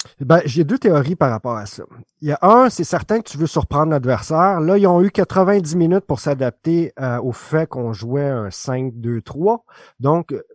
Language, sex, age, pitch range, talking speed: French, male, 30-49, 130-175 Hz, 210 wpm